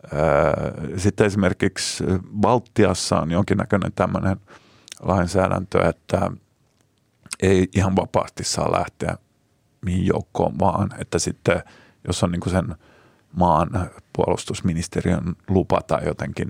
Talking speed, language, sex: 90 wpm, Finnish, male